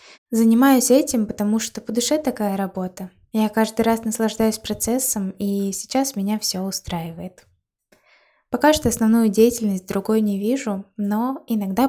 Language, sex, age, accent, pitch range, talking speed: Russian, female, 20-39, native, 195-230 Hz, 135 wpm